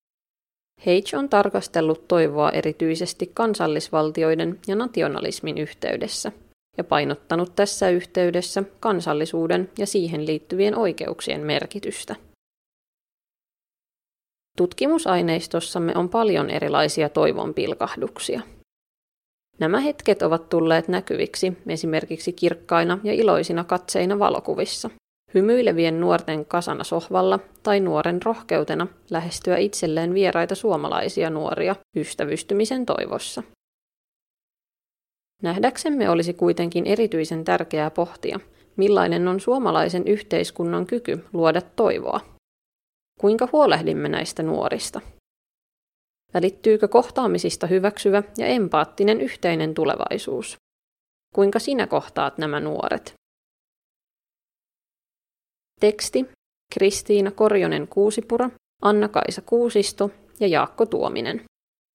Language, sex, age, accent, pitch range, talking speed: Finnish, female, 30-49, native, 170-210 Hz, 85 wpm